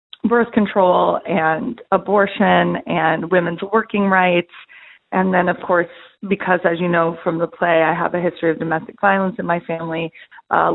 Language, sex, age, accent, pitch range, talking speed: English, female, 30-49, American, 175-210 Hz, 165 wpm